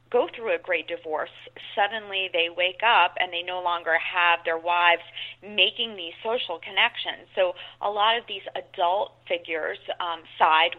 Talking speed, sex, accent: 155 wpm, female, American